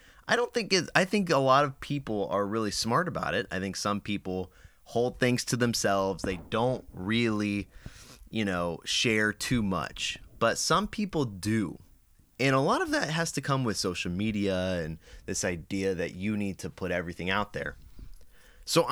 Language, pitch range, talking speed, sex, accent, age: English, 95-125 Hz, 185 wpm, male, American, 30-49